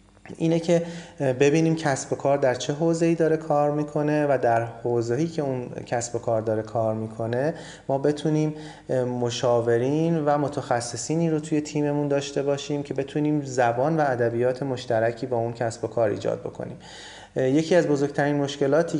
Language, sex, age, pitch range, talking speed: Persian, male, 30-49, 120-145 Hz, 160 wpm